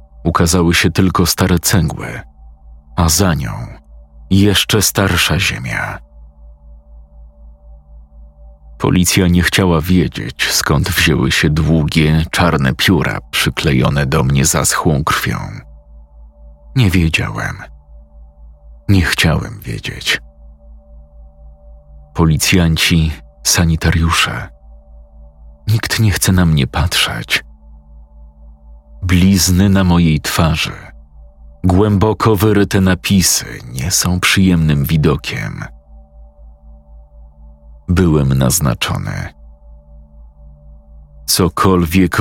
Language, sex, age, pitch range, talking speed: Polish, male, 40-59, 70-85 Hz, 75 wpm